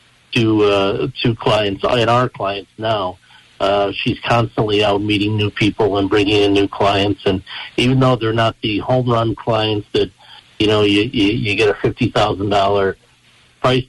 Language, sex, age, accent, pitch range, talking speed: English, male, 60-79, American, 105-120 Hz, 175 wpm